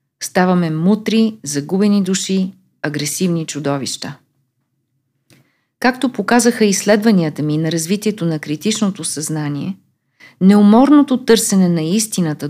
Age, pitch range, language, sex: 40-59, 145-220 Hz, Bulgarian, female